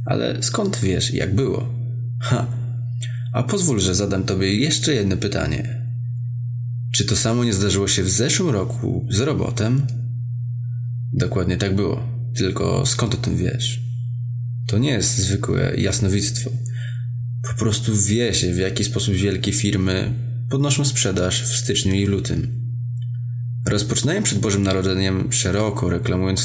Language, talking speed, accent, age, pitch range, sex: Polish, 135 wpm, native, 20-39, 100-120 Hz, male